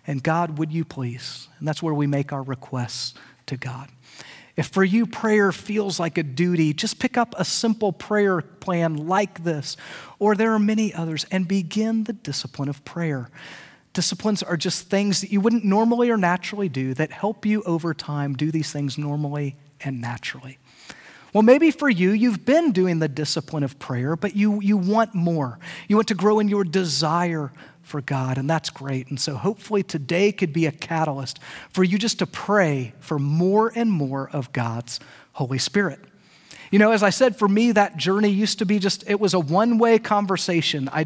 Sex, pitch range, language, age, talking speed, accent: male, 145-205 Hz, English, 40-59, 195 wpm, American